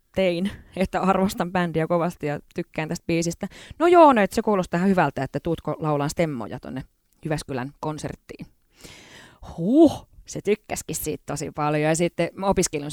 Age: 20-39